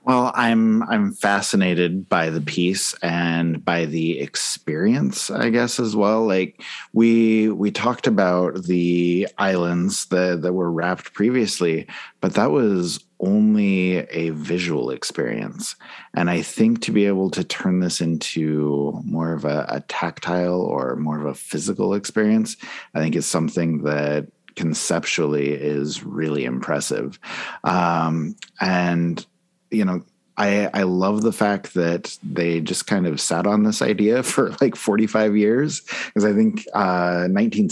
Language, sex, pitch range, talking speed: English, male, 80-100 Hz, 145 wpm